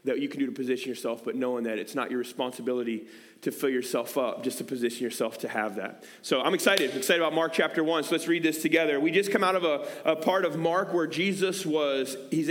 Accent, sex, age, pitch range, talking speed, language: American, male, 30-49, 135-170 Hz, 250 wpm, English